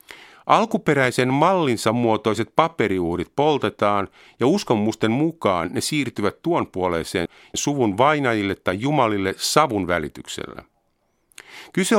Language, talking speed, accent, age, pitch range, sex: Finnish, 90 wpm, native, 50-69, 100-135 Hz, male